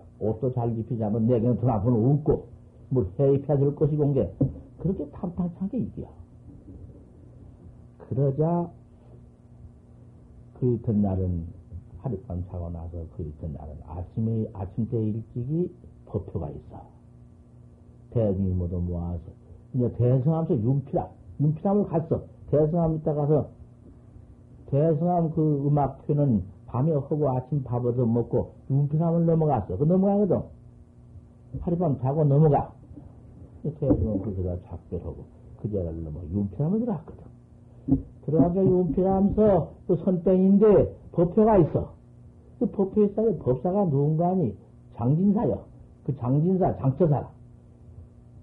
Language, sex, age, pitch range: Korean, male, 60-79, 110-155 Hz